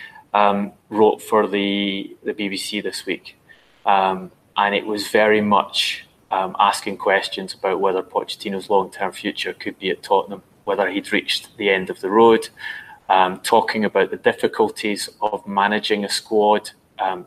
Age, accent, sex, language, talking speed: 20-39, British, male, English, 155 wpm